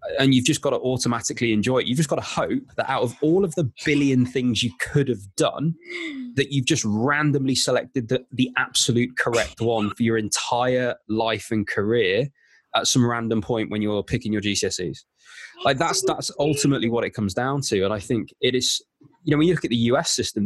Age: 20-39